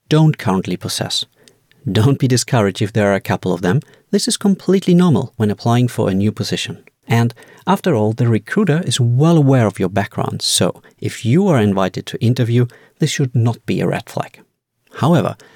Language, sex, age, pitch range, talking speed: English, male, 40-59, 110-145 Hz, 190 wpm